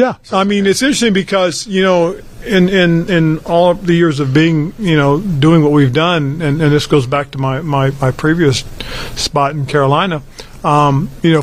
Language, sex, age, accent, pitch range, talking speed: English, male, 50-69, American, 135-160 Hz, 200 wpm